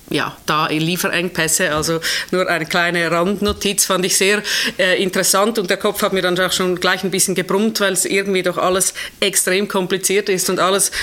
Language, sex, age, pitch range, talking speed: German, female, 30-49, 170-195 Hz, 195 wpm